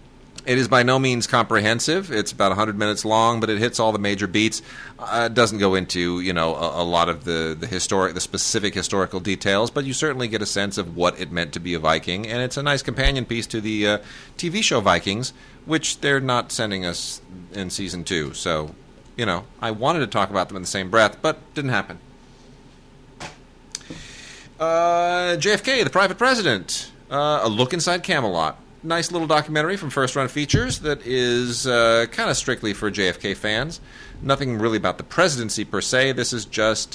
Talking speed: 195 wpm